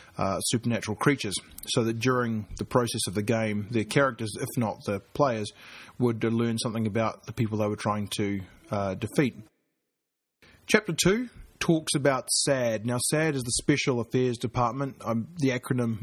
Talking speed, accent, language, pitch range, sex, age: 165 wpm, Australian, English, 110-135 Hz, male, 30-49